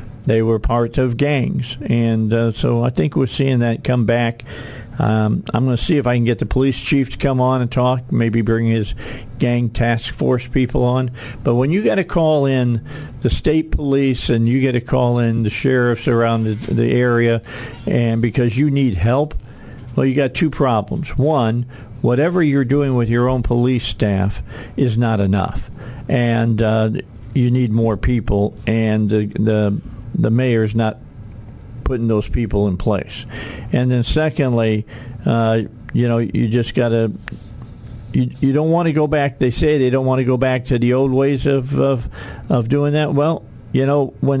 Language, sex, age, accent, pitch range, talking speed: English, male, 50-69, American, 115-135 Hz, 190 wpm